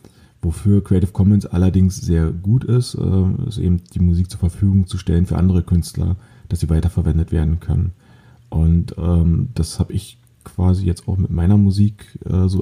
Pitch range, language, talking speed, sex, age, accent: 85-100 Hz, German, 160 wpm, male, 30-49, German